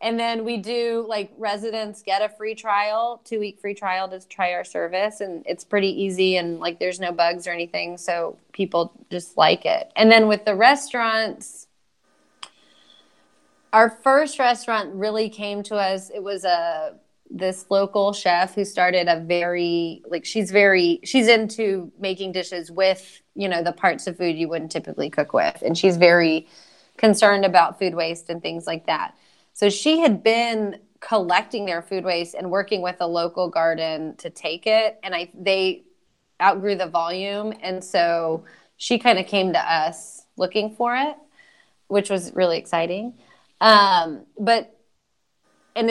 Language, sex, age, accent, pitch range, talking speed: English, female, 30-49, American, 175-220 Hz, 165 wpm